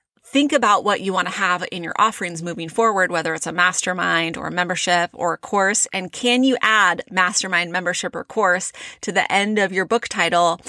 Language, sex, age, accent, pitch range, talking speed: English, female, 30-49, American, 175-220 Hz, 210 wpm